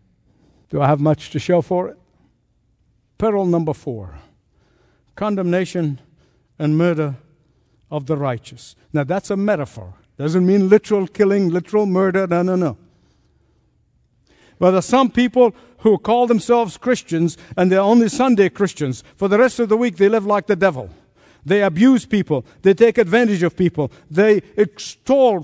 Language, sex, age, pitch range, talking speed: English, male, 60-79, 135-210 Hz, 155 wpm